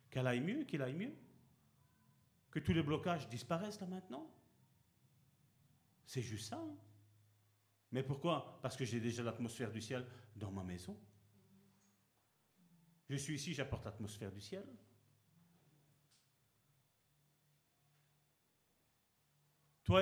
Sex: male